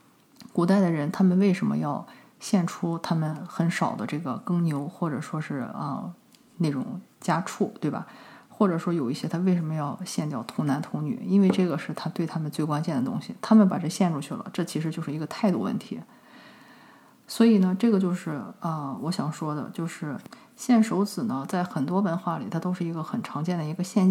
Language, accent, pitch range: Chinese, native, 155-200 Hz